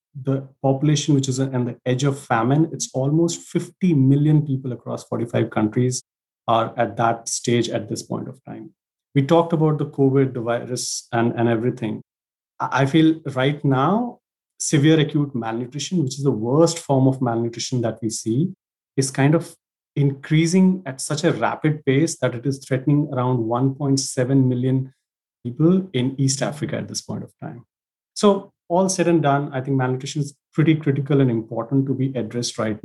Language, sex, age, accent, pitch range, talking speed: English, male, 30-49, Indian, 115-140 Hz, 175 wpm